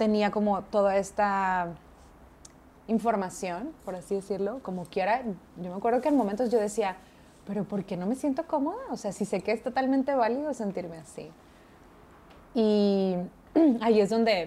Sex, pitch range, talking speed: female, 180-220 Hz, 160 wpm